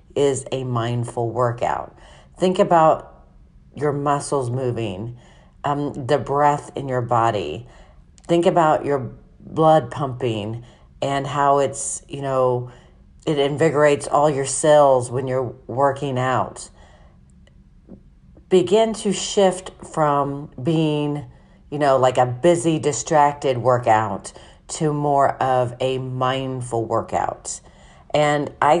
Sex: female